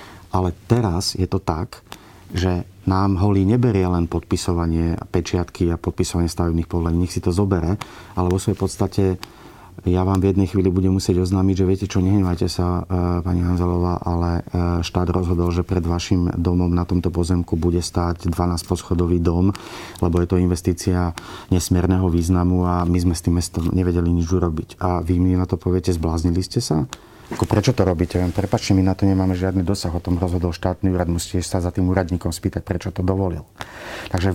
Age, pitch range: 30-49, 90-100 Hz